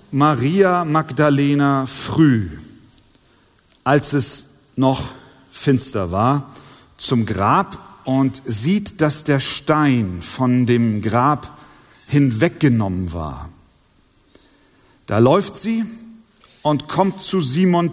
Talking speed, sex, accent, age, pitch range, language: 90 wpm, male, German, 40-59, 120-170 Hz, German